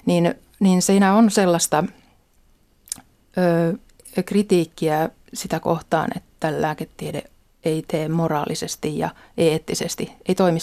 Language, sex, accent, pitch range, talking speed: Finnish, female, native, 160-190 Hz, 100 wpm